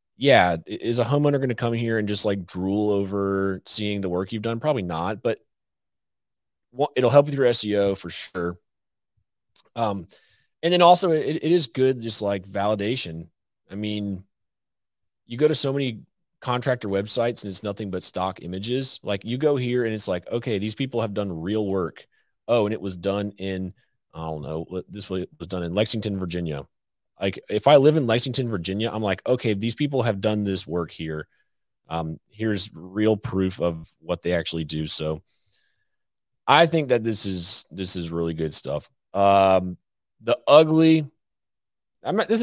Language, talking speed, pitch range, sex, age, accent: English, 175 wpm, 90-115 Hz, male, 30-49, American